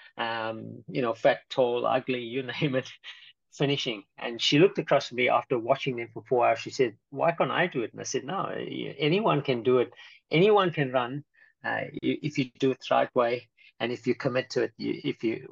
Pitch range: 125-150 Hz